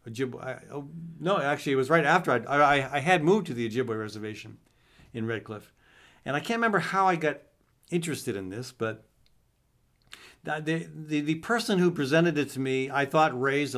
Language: English